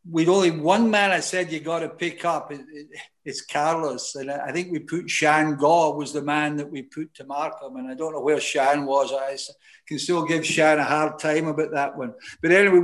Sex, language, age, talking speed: male, English, 60-79, 235 wpm